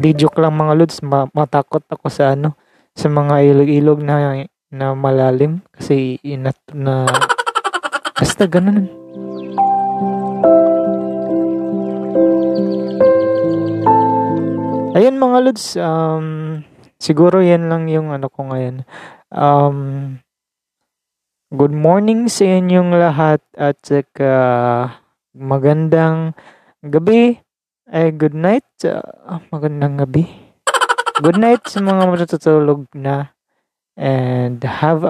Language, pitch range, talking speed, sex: Filipino, 135-180 Hz, 95 wpm, male